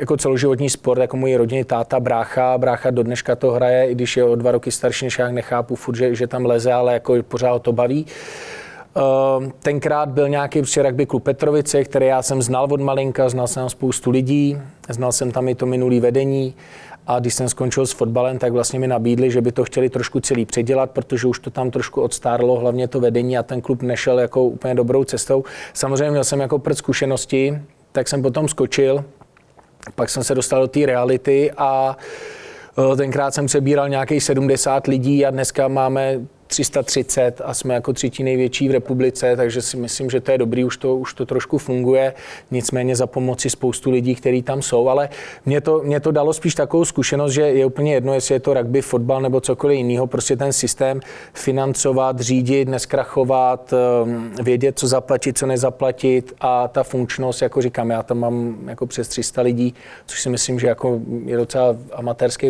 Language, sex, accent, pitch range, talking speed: Czech, male, native, 125-135 Hz, 190 wpm